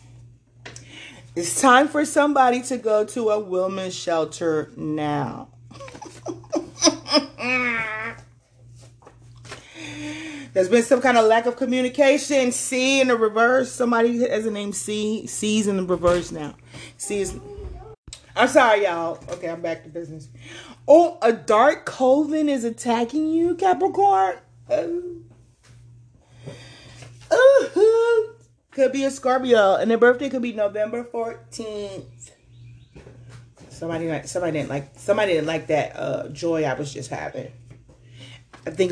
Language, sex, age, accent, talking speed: English, female, 30-49, American, 125 wpm